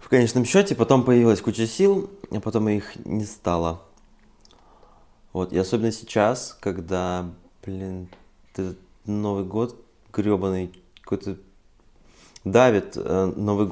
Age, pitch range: 20-39, 95-120 Hz